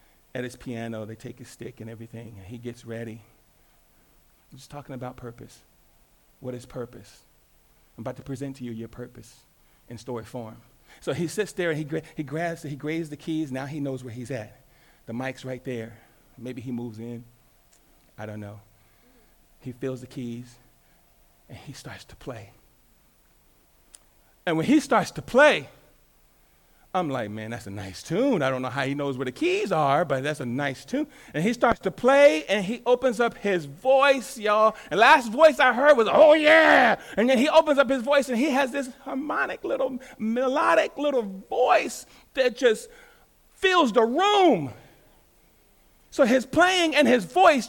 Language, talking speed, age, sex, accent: English, 180 wpm, 40-59, male, American